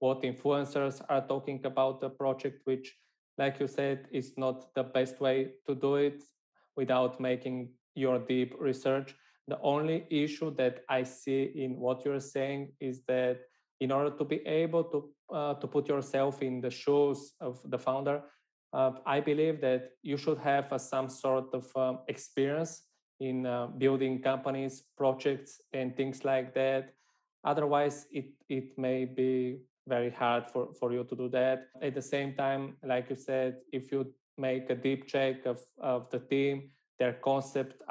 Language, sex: English, male